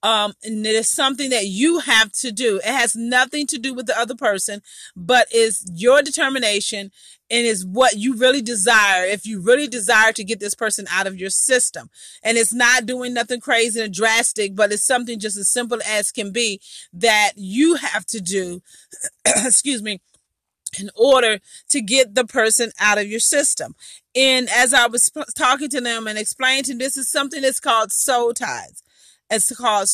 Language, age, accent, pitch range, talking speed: English, 40-59, American, 205-250 Hz, 190 wpm